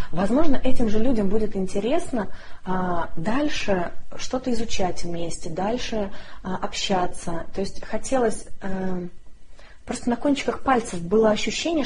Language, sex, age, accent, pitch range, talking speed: Russian, female, 20-39, native, 185-240 Hz, 105 wpm